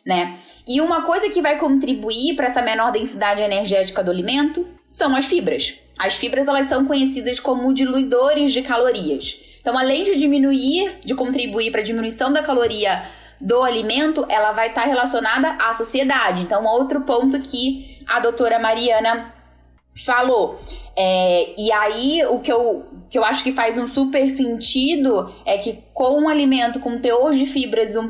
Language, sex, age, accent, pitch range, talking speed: Portuguese, female, 10-29, Brazilian, 225-270 Hz, 170 wpm